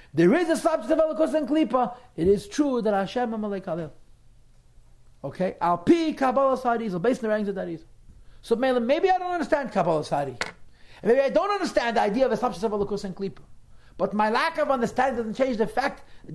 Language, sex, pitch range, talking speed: English, male, 190-265 Hz, 205 wpm